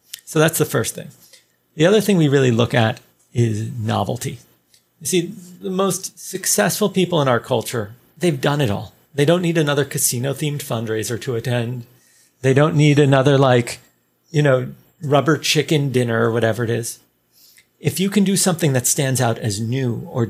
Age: 40-59